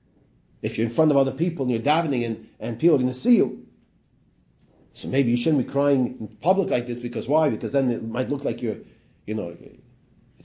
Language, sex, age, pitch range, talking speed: English, male, 30-49, 130-185 Hz, 230 wpm